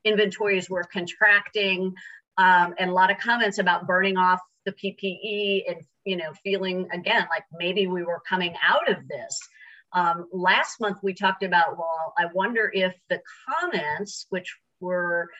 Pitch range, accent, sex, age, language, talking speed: 170-200 Hz, American, female, 50-69, English, 160 wpm